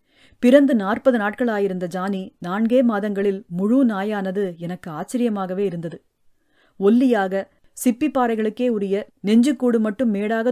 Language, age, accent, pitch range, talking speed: Tamil, 30-49, native, 190-235 Hz, 95 wpm